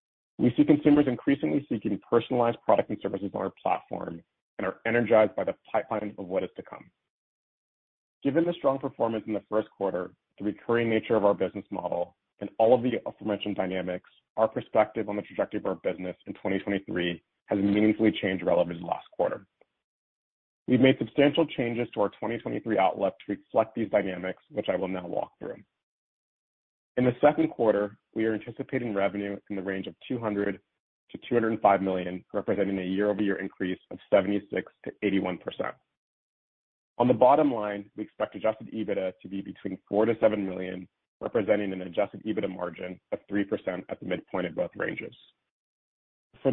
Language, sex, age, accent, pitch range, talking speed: English, male, 40-59, American, 95-115 Hz, 175 wpm